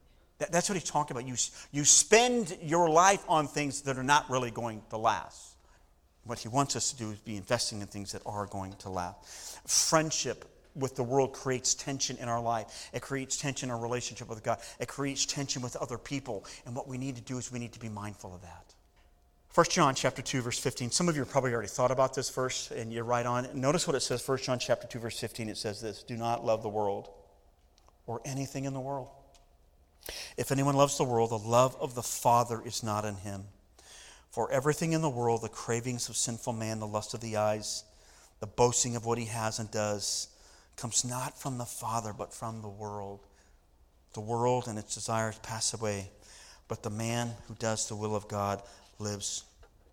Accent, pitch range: American, 105-130 Hz